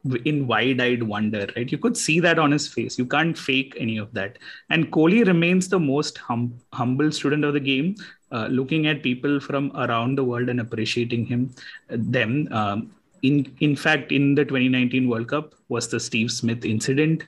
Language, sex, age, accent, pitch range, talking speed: English, male, 30-49, Indian, 115-145 Hz, 190 wpm